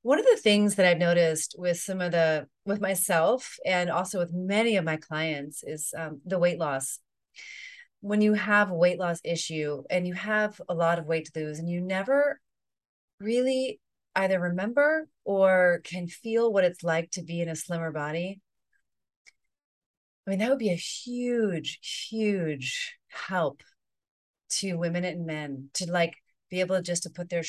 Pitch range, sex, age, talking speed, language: 155-190 Hz, female, 30-49, 170 wpm, English